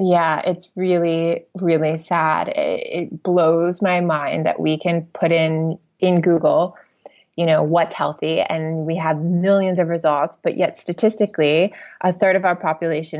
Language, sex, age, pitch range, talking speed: English, female, 20-39, 155-185 Hz, 160 wpm